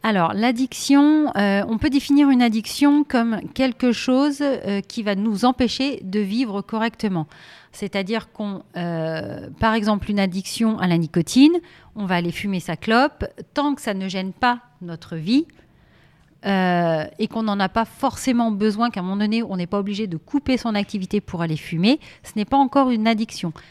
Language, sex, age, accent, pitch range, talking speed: French, female, 40-59, French, 195-255 Hz, 180 wpm